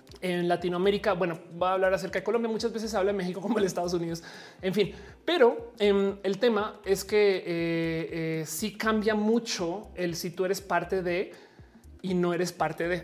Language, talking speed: Spanish, 200 wpm